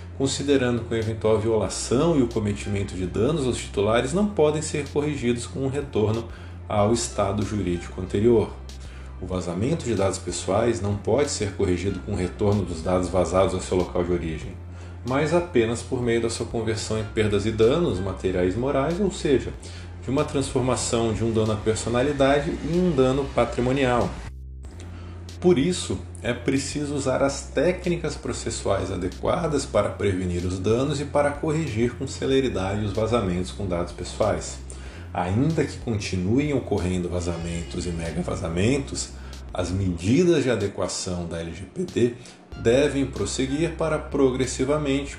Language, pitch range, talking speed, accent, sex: Portuguese, 90-120 Hz, 150 wpm, Brazilian, male